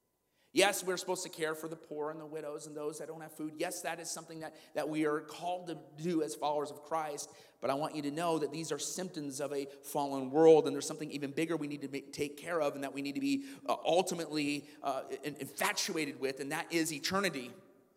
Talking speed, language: 240 wpm, English